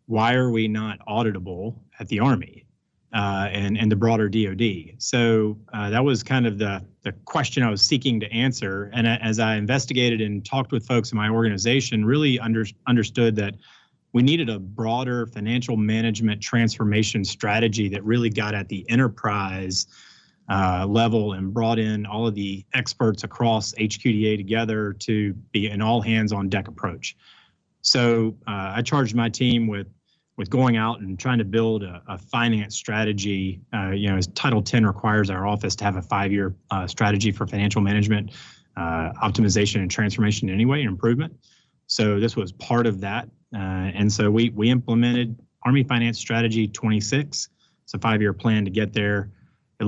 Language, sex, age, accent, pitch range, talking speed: English, male, 30-49, American, 100-115 Hz, 165 wpm